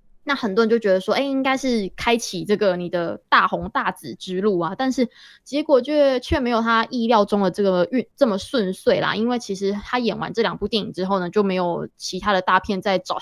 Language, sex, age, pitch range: Chinese, female, 20-39, 190-240 Hz